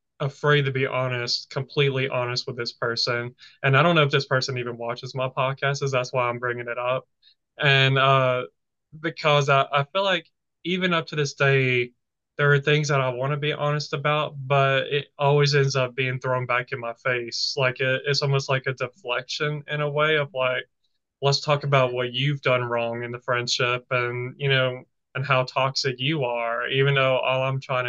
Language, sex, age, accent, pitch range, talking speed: English, male, 20-39, American, 125-145 Hz, 200 wpm